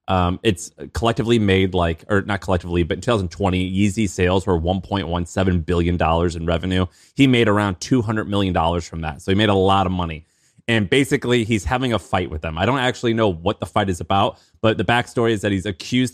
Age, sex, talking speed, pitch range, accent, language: 20-39, male, 215 wpm, 95-115 Hz, American, English